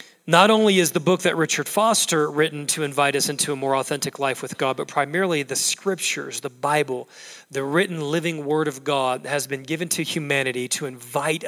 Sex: male